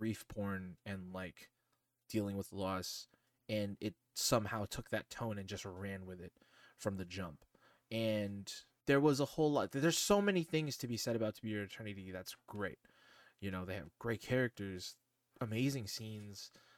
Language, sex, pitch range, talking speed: English, male, 105-130 Hz, 175 wpm